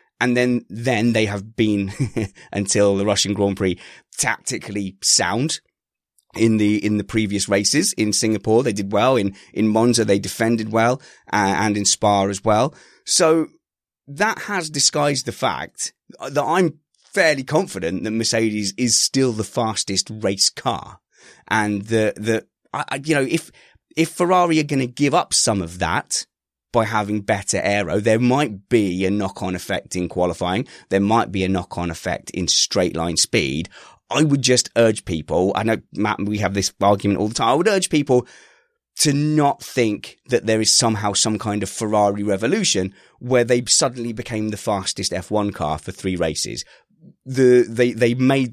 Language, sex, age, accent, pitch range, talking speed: English, male, 20-39, British, 100-125 Hz, 170 wpm